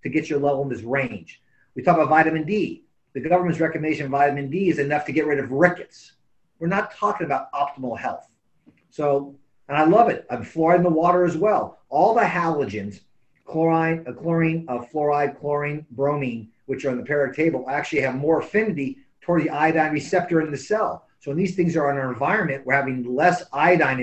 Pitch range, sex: 135-175 Hz, male